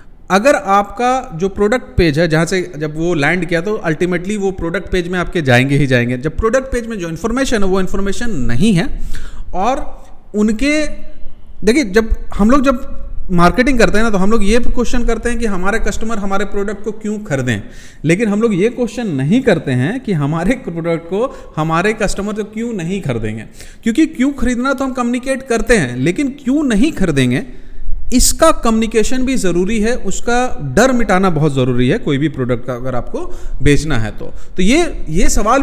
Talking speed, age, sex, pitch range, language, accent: 190 wpm, 40-59, male, 165-245 Hz, Hindi, native